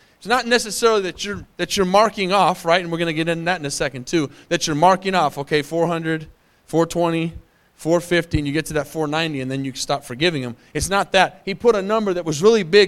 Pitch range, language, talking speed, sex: 155-215 Hz, English, 240 wpm, male